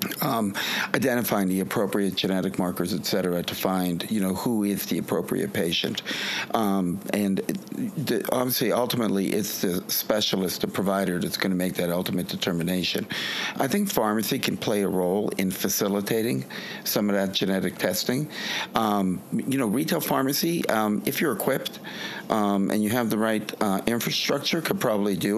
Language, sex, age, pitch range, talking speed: English, male, 50-69, 95-105 Hz, 160 wpm